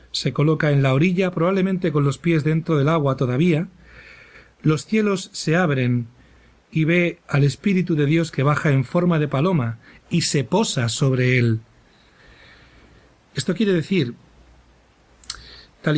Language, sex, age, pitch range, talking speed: Spanish, male, 40-59, 130-175 Hz, 145 wpm